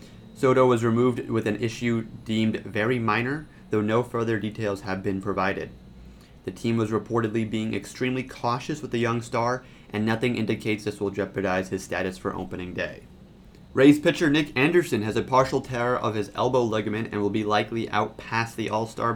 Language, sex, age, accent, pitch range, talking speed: English, male, 30-49, American, 105-120 Hz, 180 wpm